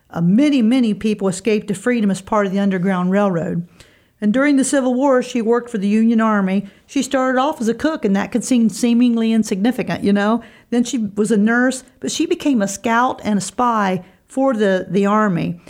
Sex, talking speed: female, 210 wpm